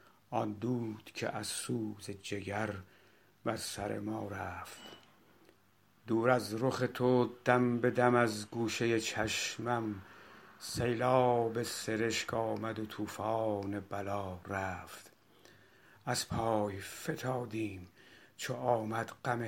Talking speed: 105 wpm